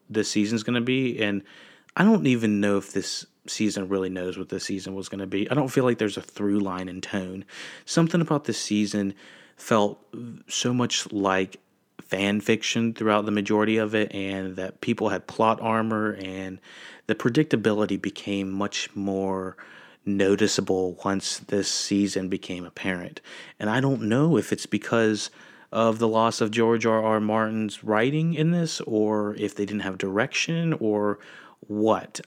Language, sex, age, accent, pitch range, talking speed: English, male, 30-49, American, 100-115 Hz, 170 wpm